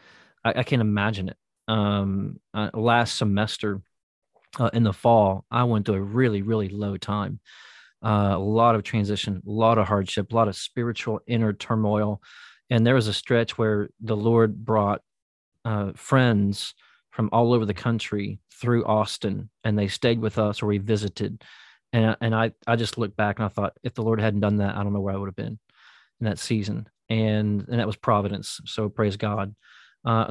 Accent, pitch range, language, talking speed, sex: American, 105-115 Hz, English, 195 wpm, male